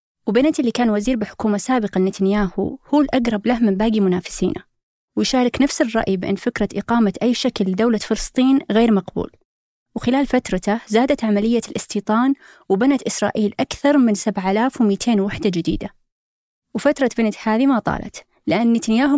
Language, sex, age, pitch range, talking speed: Arabic, female, 20-39, 200-245 Hz, 140 wpm